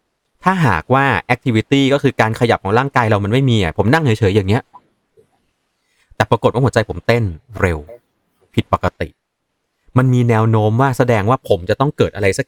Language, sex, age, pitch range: Thai, male, 30-49, 95-120 Hz